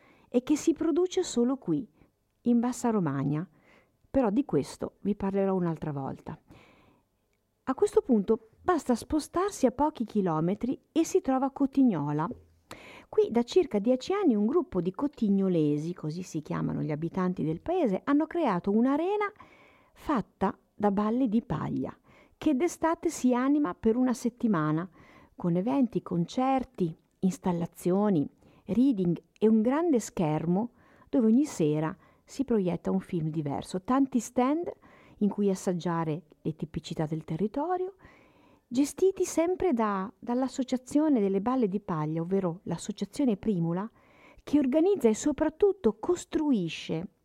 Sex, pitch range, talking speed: female, 180-275 Hz, 130 wpm